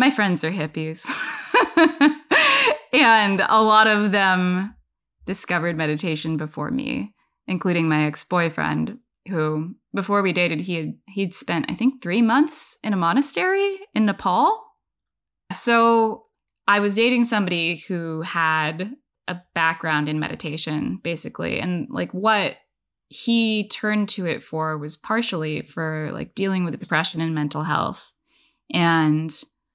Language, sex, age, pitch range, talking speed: English, female, 10-29, 160-220 Hz, 130 wpm